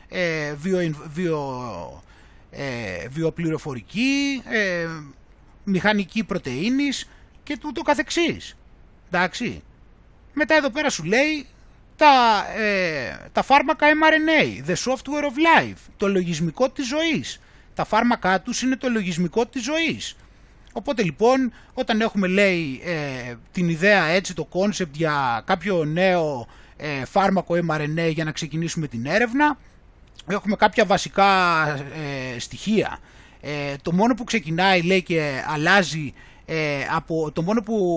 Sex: male